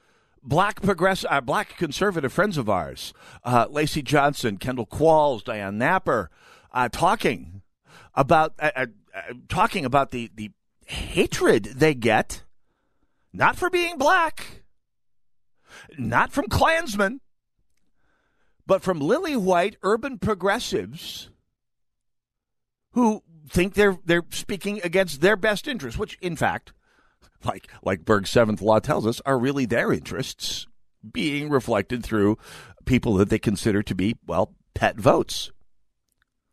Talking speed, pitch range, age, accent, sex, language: 125 wpm, 110-180 Hz, 50-69, American, male, English